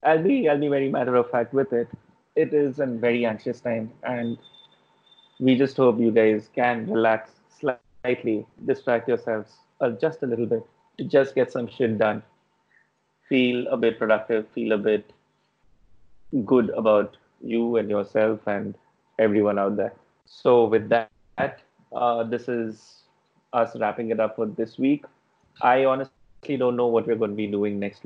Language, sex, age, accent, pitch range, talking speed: English, male, 30-49, Indian, 105-120 Hz, 160 wpm